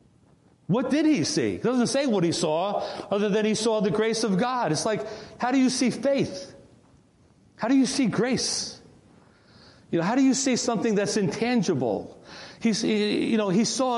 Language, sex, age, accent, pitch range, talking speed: English, male, 40-59, American, 210-255 Hz, 185 wpm